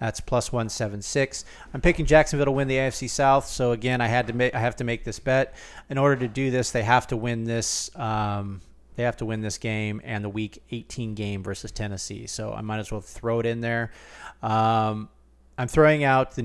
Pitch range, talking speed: 105-125 Hz, 230 wpm